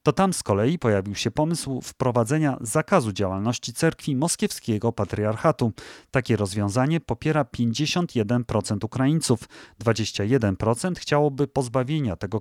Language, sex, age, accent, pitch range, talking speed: Polish, male, 30-49, native, 105-145 Hz, 105 wpm